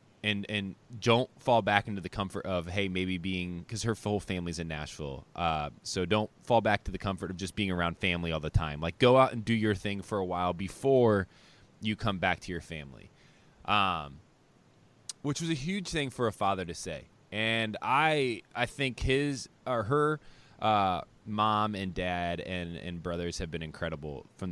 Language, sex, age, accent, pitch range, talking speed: English, male, 20-39, American, 90-115 Hz, 195 wpm